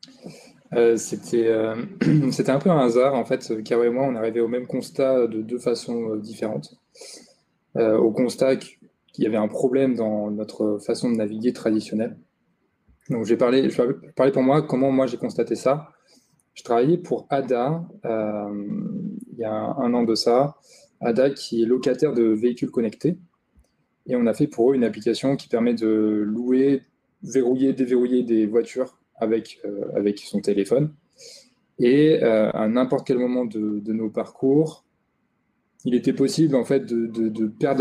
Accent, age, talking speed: French, 20-39, 165 wpm